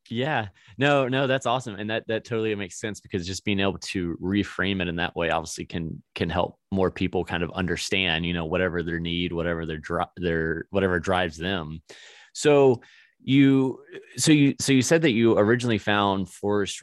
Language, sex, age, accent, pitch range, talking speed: English, male, 20-39, American, 85-105 Hz, 190 wpm